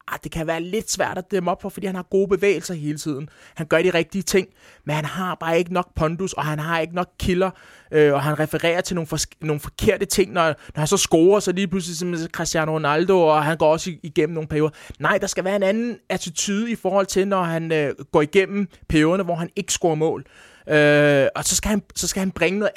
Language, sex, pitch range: Danish, male, 155-190 Hz